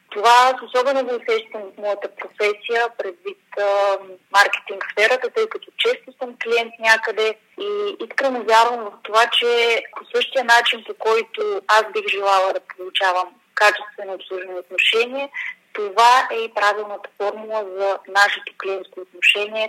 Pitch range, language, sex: 205-260 Hz, Bulgarian, female